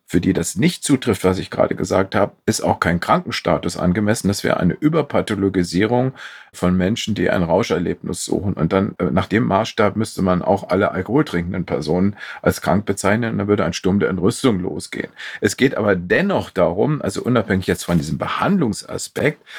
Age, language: 40-59, German